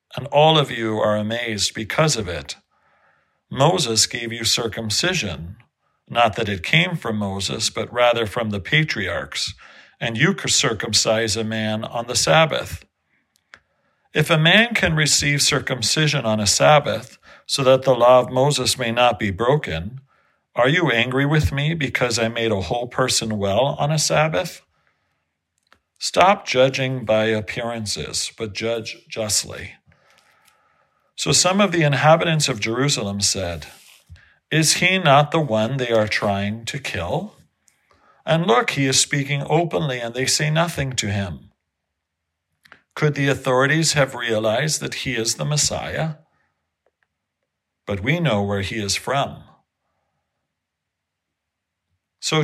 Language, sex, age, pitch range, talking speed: English, male, 50-69, 105-145 Hz, 140 wpm